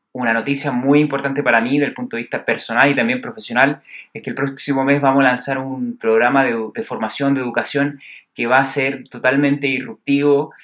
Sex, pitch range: male, 130-150 Hz